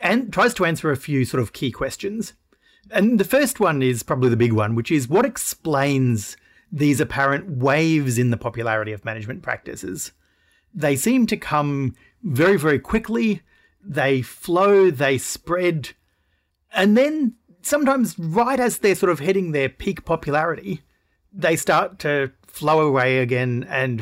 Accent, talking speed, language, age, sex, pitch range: Australian, 155 wpm, English, 30-49, male, 130-185 Hz